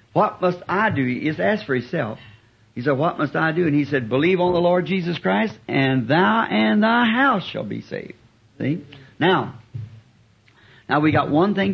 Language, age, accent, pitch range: English, 60-79, American, 120-165 Hz